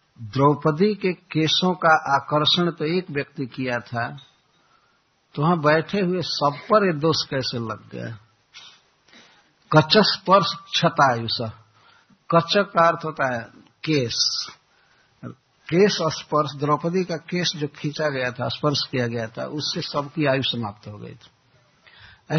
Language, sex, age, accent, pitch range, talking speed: Hindi, male, 60-79, native, 125-165 Hz, 140 wpm